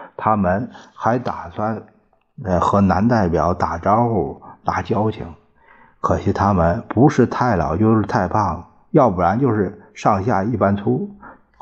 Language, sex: Chinese, male